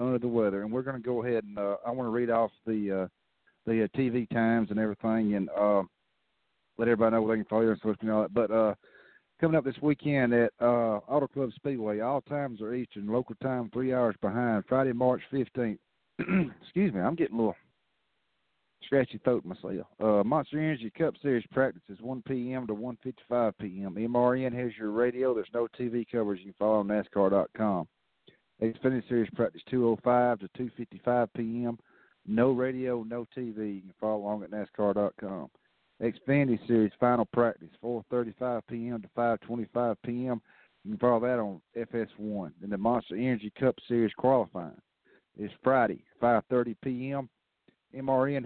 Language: English